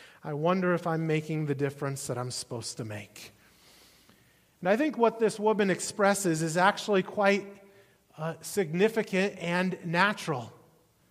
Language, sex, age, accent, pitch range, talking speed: English, male, 30-49, American, 170-235 Hz, 140 wpm